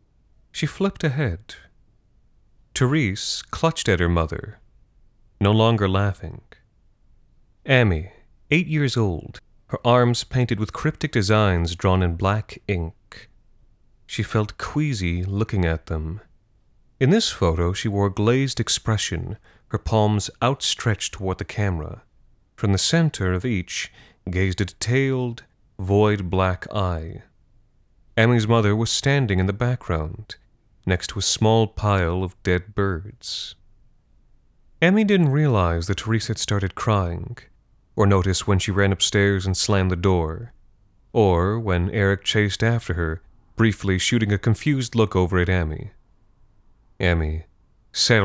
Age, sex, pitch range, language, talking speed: 30-49, male, 90-115 Hz, English, 130 wpm